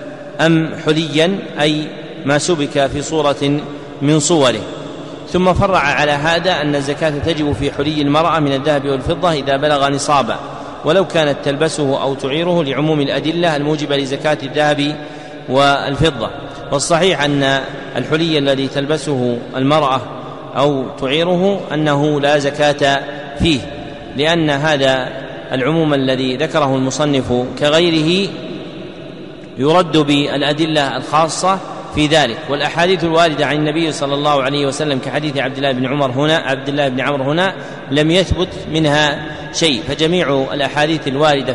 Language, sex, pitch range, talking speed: Arabic, male, 140-155 Hz, 125 wpm